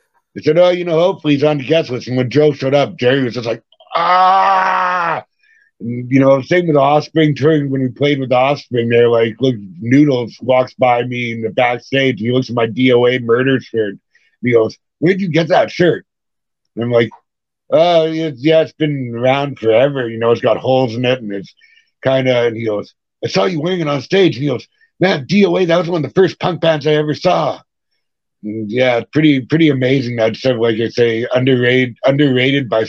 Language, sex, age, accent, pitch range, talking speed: English, male, 60-79, American, 120-150 Hz, 215 wpm